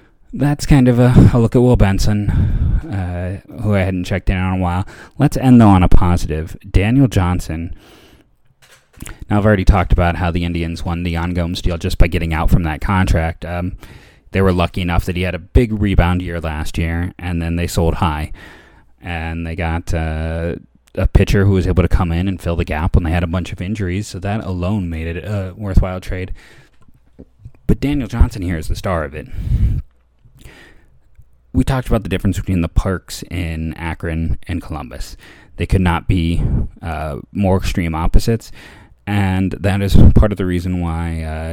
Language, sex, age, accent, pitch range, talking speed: English, male, 30-49, American, 85-100 Hz, 195 wpm